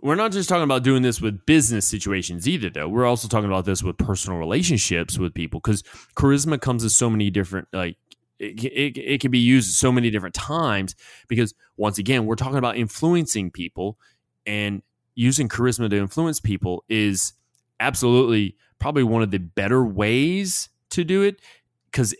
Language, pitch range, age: English, 100-130 Hz, 20-39